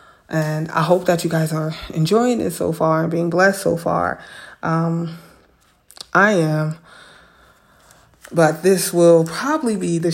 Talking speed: 150 wpm